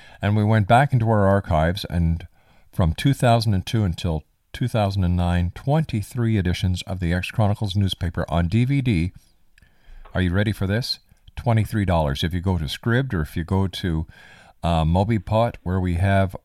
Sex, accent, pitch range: male, American, 85-115 Hz